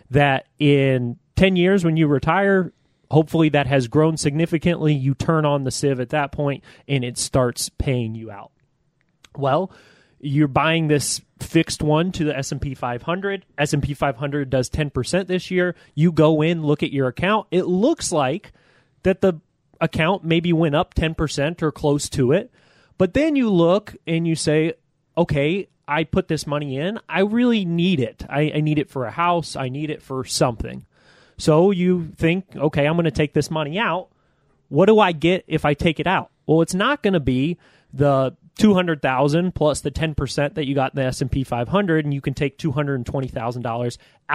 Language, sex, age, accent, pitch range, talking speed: English, male, 30-49, American, 140-170 Hz, 185 wpm